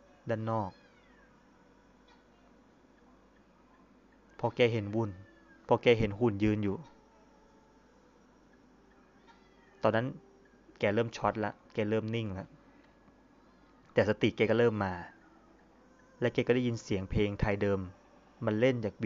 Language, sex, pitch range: Thai, male, 105-130 Hz